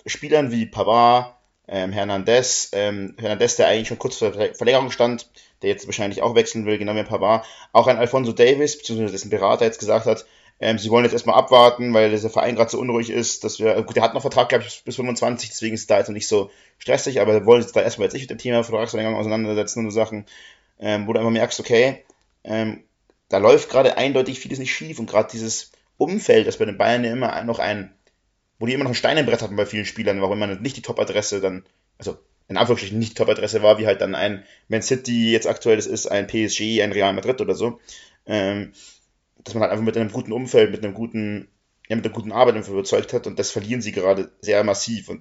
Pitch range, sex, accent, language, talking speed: 100-120 Hz, male, German, German, 235 wpm